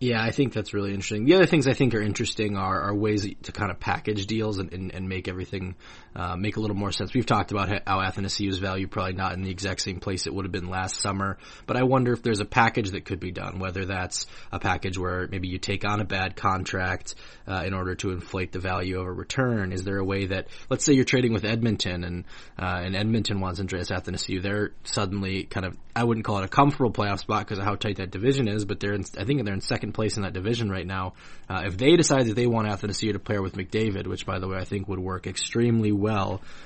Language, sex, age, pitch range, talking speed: English, male, 20-39, 95-110 Hz, 255 wpm